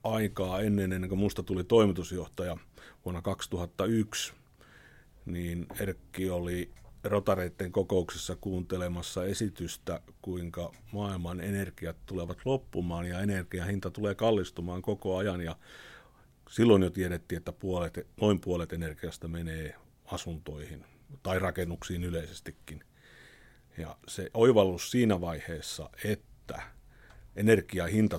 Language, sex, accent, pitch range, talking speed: Finnish, male, native, 85-105 Hz, 95 wpm